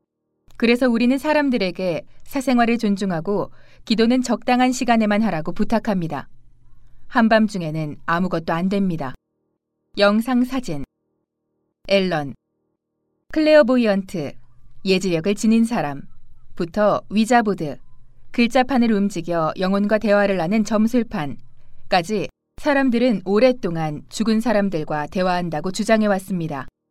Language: Korean